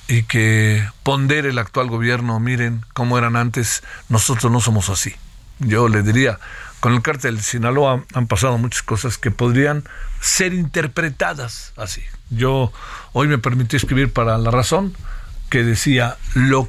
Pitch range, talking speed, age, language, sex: 110-140 Hz, 150 wpm, 50-69, Spanish, male